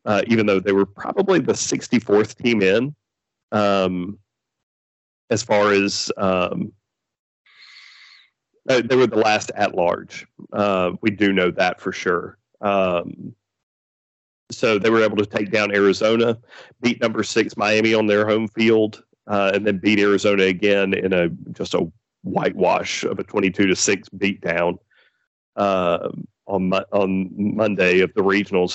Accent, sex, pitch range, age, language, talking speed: American, male, 95-110 Hz, 40-59, English, 145 wpm